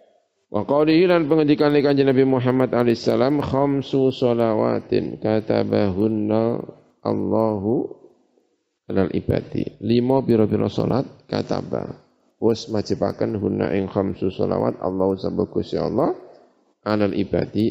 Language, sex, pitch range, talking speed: Indonesian, male, 100-135 Hz, 95 wpm